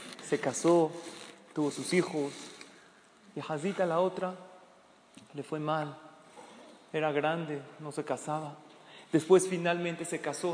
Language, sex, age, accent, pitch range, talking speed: Spanish, male, 40-59, Mexican, 160-200 Hz, 120 wpm